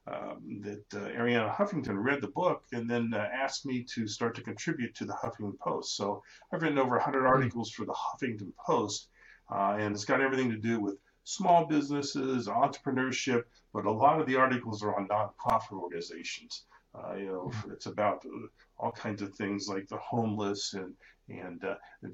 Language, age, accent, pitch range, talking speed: English, 50-69, American, 105-135 Hz, 185 wpm